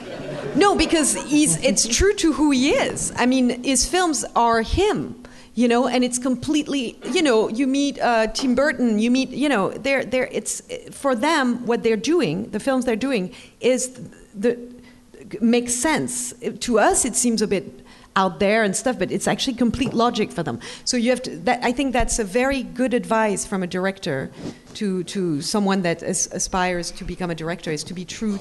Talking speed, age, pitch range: 200 wpm, 40-59, 185-240 Hz